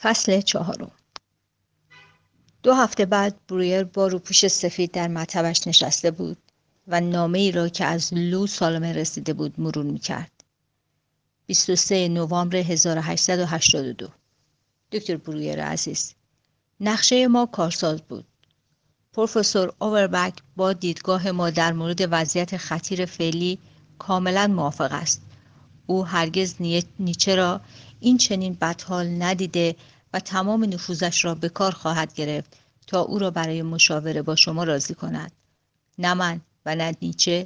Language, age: Persian, 50-69